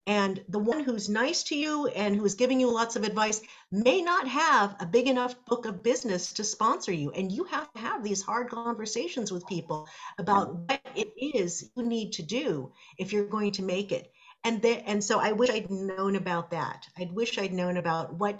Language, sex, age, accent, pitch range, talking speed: English, female, 50-69, American, 170-220 Hz, 215 wpm